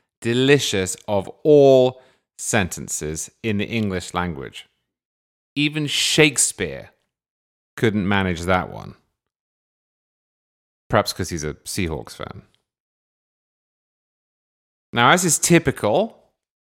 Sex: male